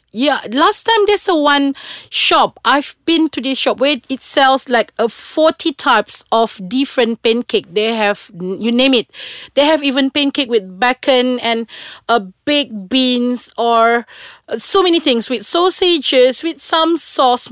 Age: 40-59